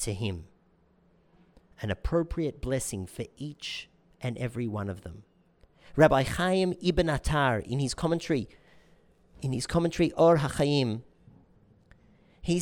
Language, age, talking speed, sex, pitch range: English, 40-59, 120 wpm, male, 125-170 Hz